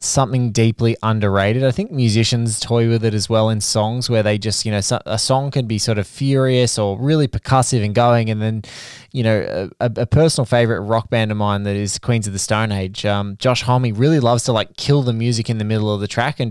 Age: 20-39